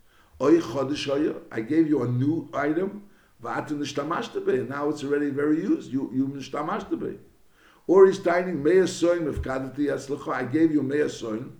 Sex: male